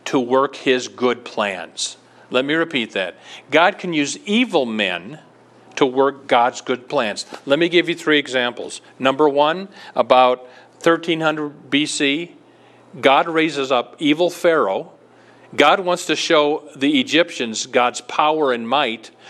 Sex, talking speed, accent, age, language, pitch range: male, 140 wpm, American, 40-59, English, 130-165 Hz